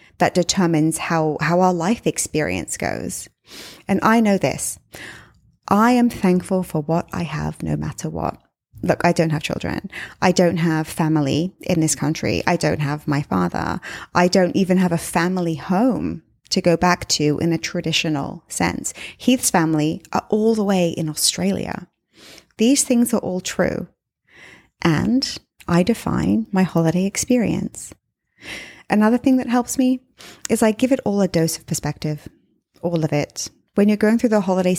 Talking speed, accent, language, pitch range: 165 wpm, British, English, 165-215 Hz